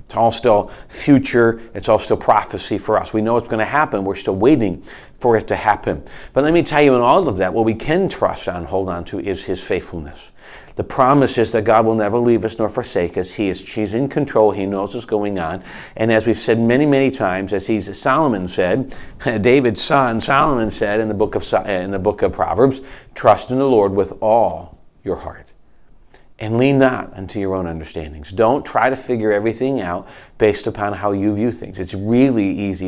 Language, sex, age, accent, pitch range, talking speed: English, male, 40-59, American, 100-125 Hz, 215 wpm